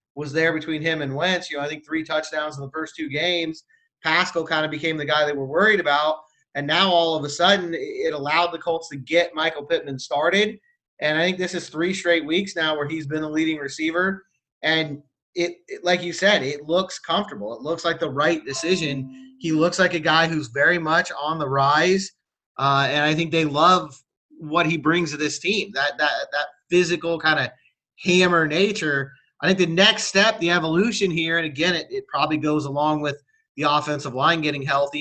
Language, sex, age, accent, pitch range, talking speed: English, male, 30-49, American, 150-175 Hz, 215 wpm